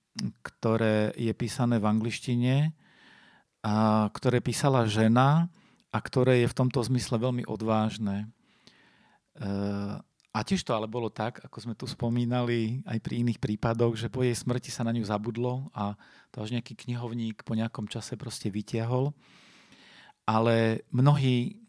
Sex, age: male, 40-59